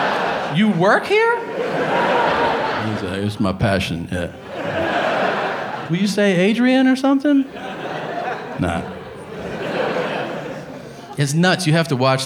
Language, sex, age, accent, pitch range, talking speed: English, male, 40-59, American, 110-150 Hz, 110 wpm